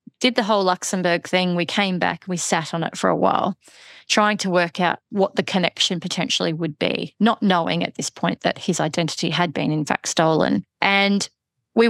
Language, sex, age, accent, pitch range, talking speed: English, female, 30-49, Australian, 170-195 Hz, 200 wpm